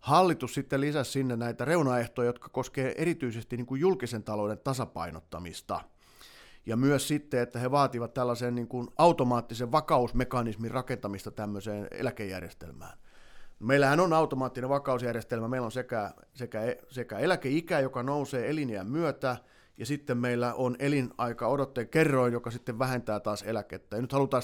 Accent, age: native, 30-49